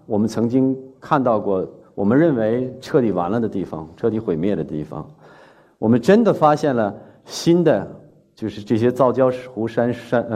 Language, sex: Chinese, male